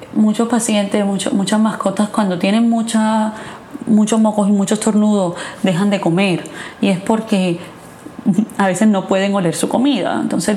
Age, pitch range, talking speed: 20-39, 190-225 Hz, 155 wpm